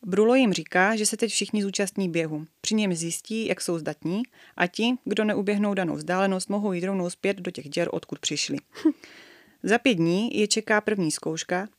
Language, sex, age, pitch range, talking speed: Czech, female, 30-49, 175-215 Hz, 190 wpm